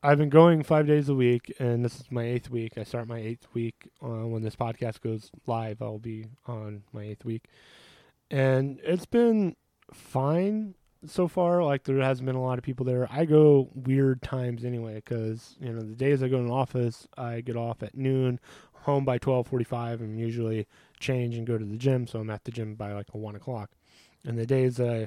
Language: English